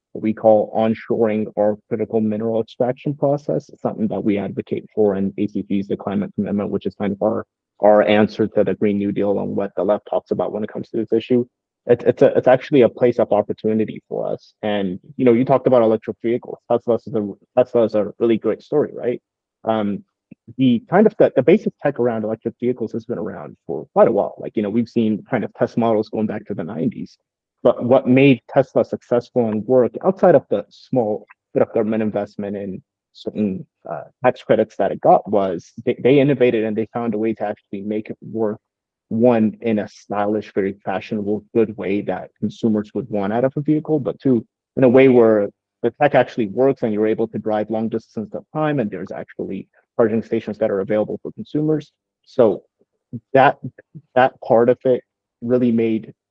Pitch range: 105-120 Hz